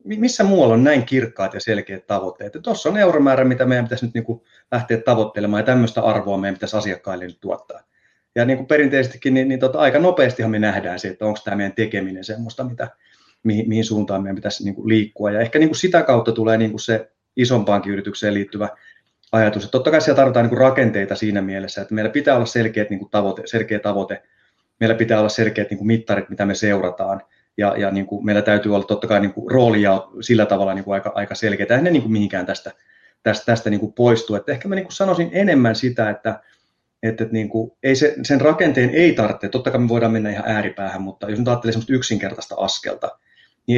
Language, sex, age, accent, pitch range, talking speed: Finnish, male, 30-49, native, 105-125 Hz, 205 wpm